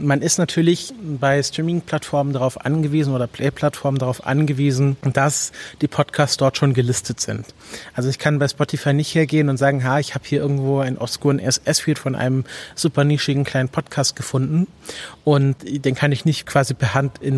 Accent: German